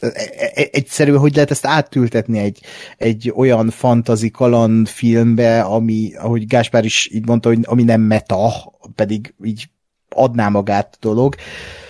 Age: 30-49